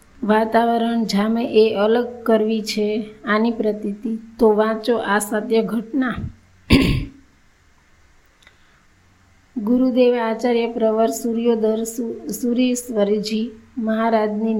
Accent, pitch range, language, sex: native, 215-230 Hz, Gujarati, female